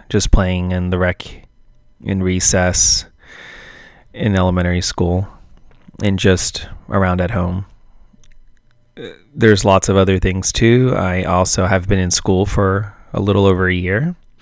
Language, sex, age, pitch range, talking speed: English, male, 20-39, 90-105 Hz, 135 wpm